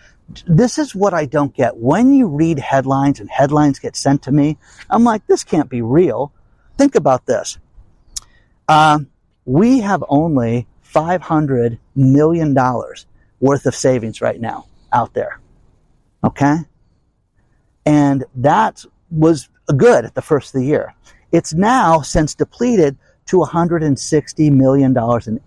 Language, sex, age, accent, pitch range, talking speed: English, male, 50-69, American, 130-195 Hz, 135 wpm